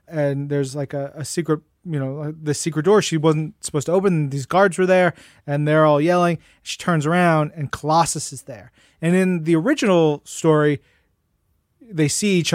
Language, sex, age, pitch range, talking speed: English, male, 30-49, 145-165 Hz, 185 wpm